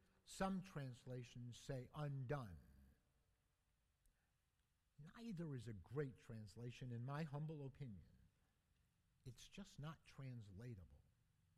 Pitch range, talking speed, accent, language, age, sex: 100-155 Hz, 90 wpm, American, English, 60-79, male